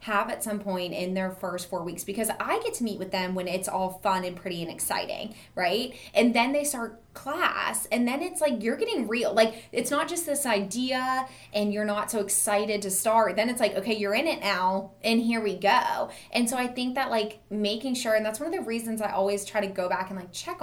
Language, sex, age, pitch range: English, female, 20-39, 195-245 Hz